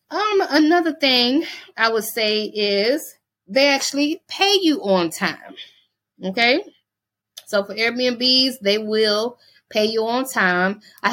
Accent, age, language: American, 20-39, English